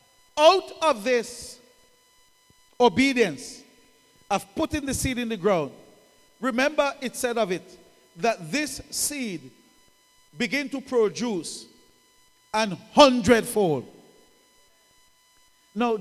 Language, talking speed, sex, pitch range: English, 95 wpm, male, 220-295 Hz